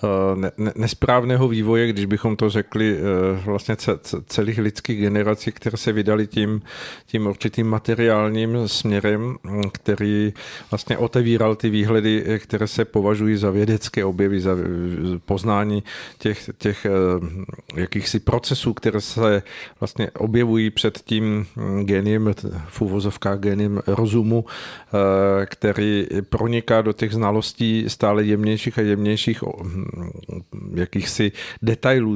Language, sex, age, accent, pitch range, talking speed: Czech, male, 50-69, native, 100-115 Hz, 105 wpm